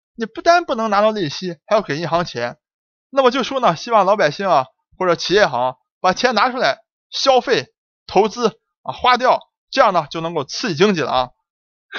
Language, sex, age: Chinese, male, 20-39